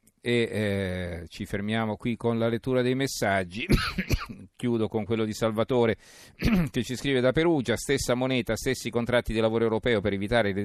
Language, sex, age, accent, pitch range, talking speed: Italian, male, 40-59, native, 100-115 Hz, 165 wpm